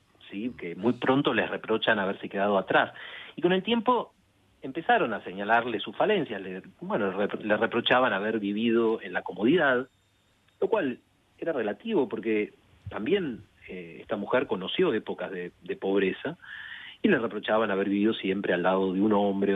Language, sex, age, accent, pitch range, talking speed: Spanish, male, 40-59, Argentinian, 100-160 Hz, 160 wpm